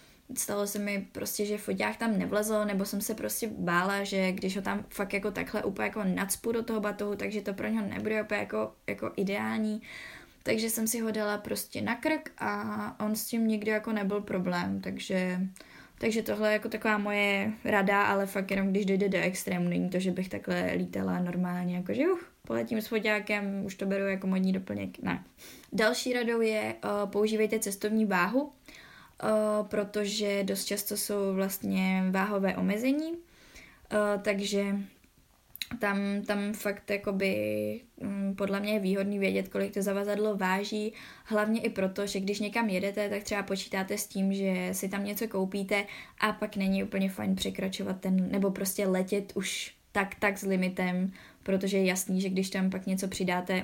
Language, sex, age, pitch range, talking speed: Czech, female, 10-29, 190-210 Hz, 170 wpm